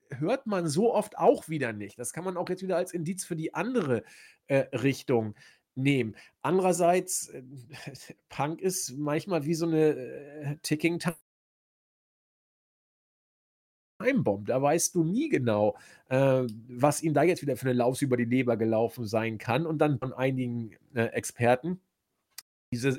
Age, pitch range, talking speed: 40-59, 125-160 Hz, 155 wpm